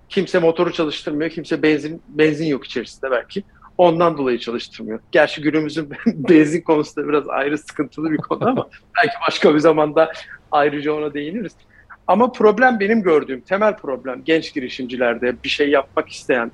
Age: 50-69